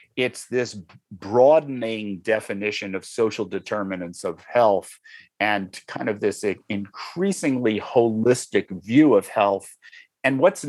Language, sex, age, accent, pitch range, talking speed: English, male, 50-69, American, 105-145 Hz, 110 wpm